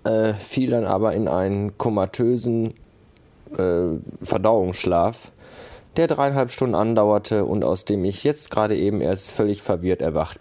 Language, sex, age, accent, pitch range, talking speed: German, male, 20-39, German, 95-120 Hz, 140 wpm